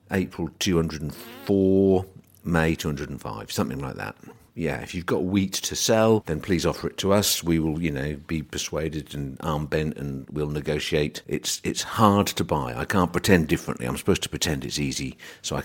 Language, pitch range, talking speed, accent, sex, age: English, 70-90 Hz, 185 wpm, British, male, 50-69